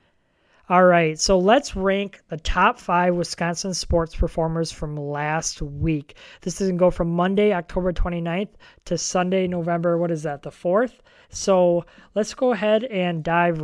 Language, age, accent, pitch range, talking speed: English, 20-39, American, 160-190 Hz, 155 wpm